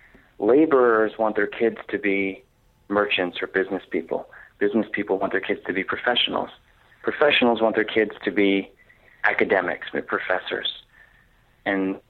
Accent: American